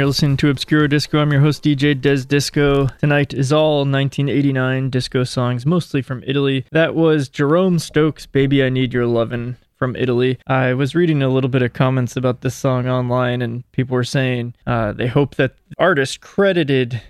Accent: American